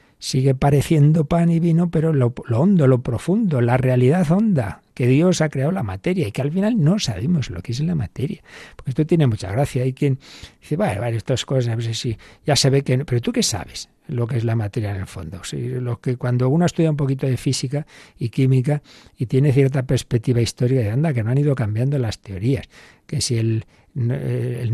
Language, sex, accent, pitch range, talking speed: Spanish, male, Spanish, 120-150 Hz, 220 wpm